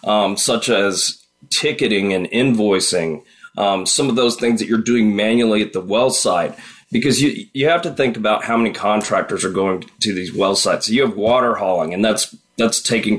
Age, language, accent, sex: 30-49, English, American, male